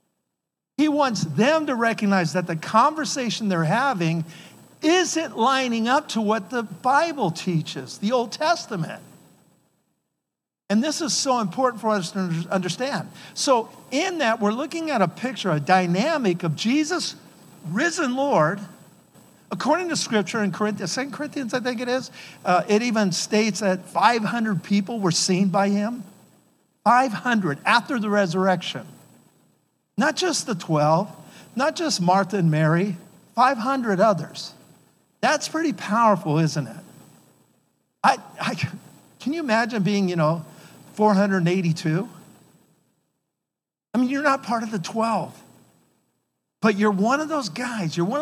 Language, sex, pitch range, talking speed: English, male, 175-250 Hz, 135 wpm